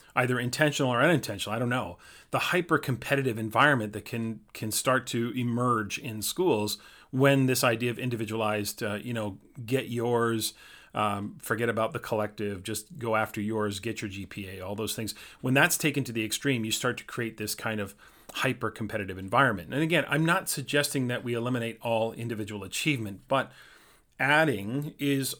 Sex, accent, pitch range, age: male, American, 110-130 Hz, 40-59